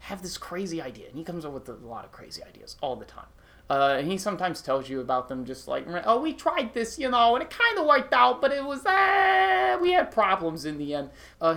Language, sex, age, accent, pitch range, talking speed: English, male, 30-49, American, 145-230 Hz, 260 wpm